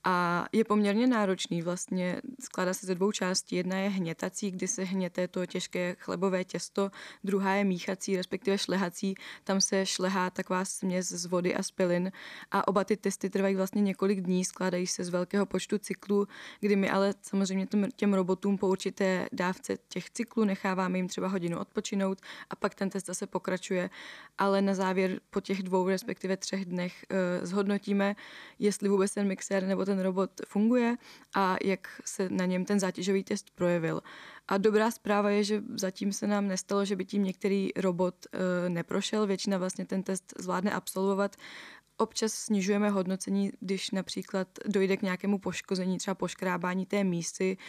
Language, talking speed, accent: Czech, 160 wpm, native